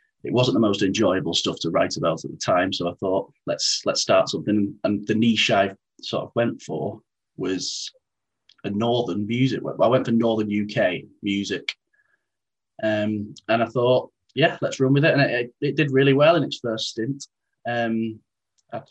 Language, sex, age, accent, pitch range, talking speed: English, male, 30-49, British, 105-125 Hz, 180 wpm